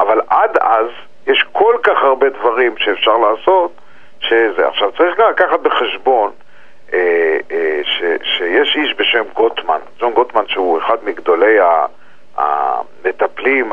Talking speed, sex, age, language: 125 wpm, male, 50-69, Hebrew